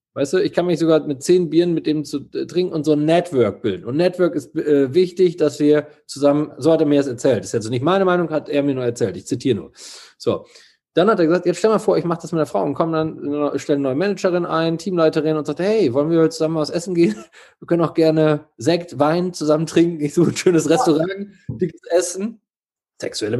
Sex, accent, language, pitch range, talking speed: male, German, German, 155-205 Hz, 250 wpm